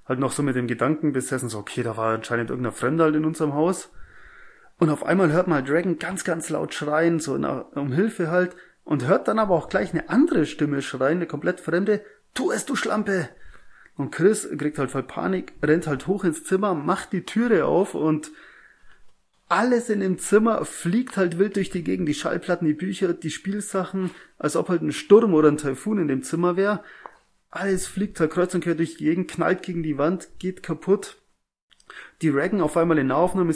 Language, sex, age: German, male, 30-49